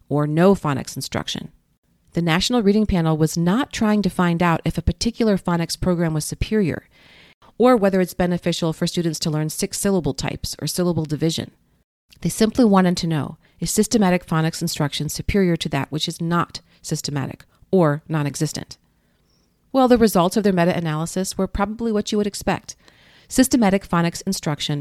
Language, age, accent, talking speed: English, 40-59, American, 160 wpm